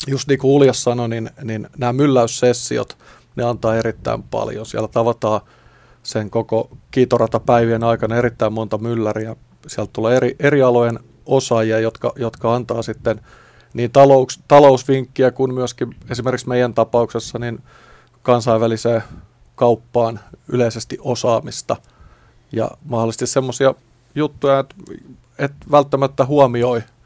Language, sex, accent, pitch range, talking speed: Finnish, male, native, 115-130 Hz, 120 wpm